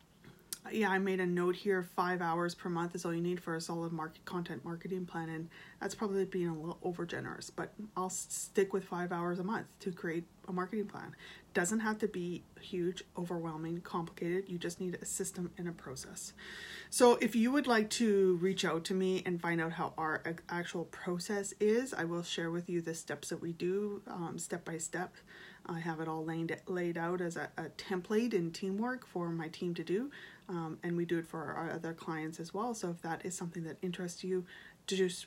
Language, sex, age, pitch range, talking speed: English, female, 30-49, 165-190 Hz, 215 wpm